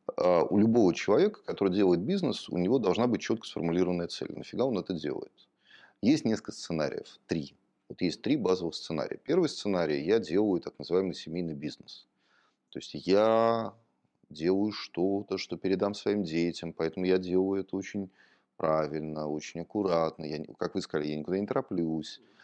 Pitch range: 80-100 Hz